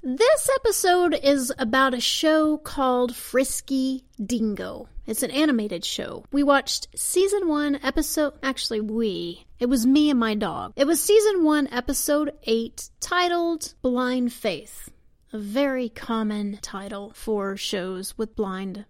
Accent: American